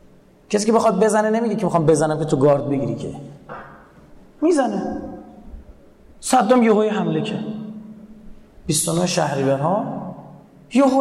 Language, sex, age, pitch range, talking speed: Persian, male, 30-49, 160-215 Hz, 125 wpm